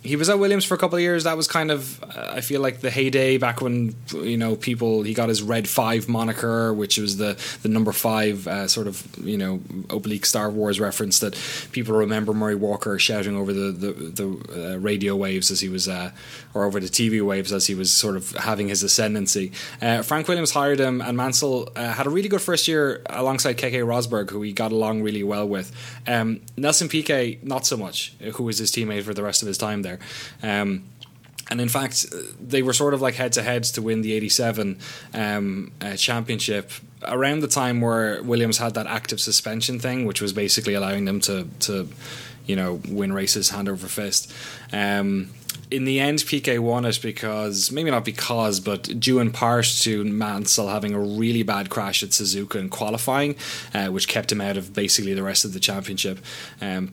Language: English